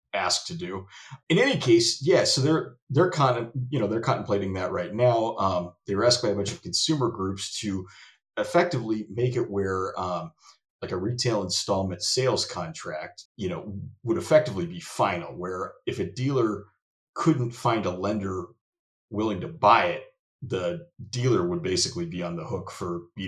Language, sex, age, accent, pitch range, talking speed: English, male, 30-49, American, 95-135 Hz, 180 wpm